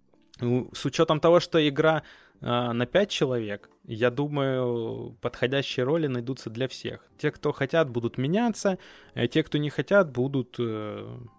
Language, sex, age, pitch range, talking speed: Russian, male, 20-39, 115-145 Hz, 140 wpm